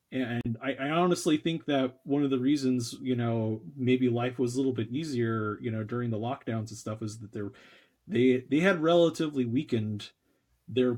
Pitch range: 110-130 Hz